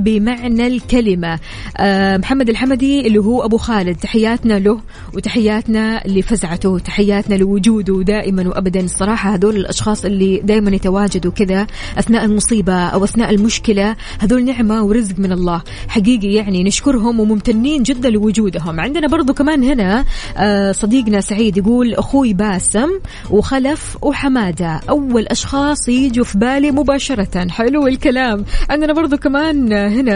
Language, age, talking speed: Arabic, 20-39, 130 wpm